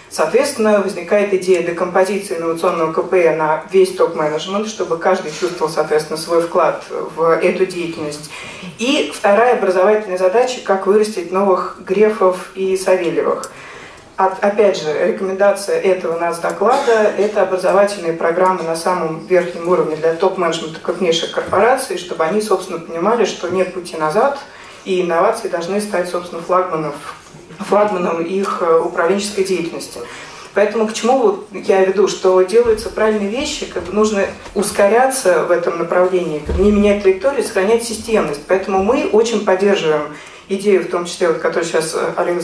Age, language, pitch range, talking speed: 30-49, Russian, 175-215 Hz, 135 wpm